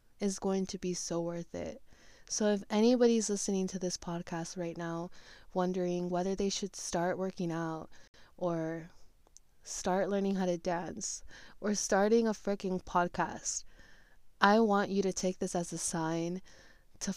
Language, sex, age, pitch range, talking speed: English, female, 20-39, 180-205 Hz, 155 wpm